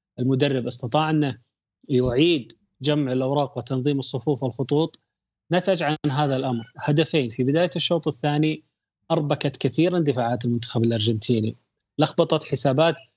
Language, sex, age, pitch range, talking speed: Arabic, male, 30-49, 125-155 Hz, 115 wpm